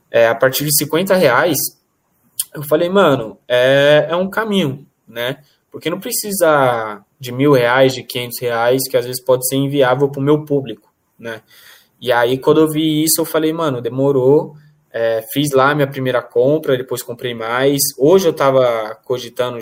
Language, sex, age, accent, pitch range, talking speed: Portuguese, male, 10-29, Brazilian, 120-155 Hz, 170 wpm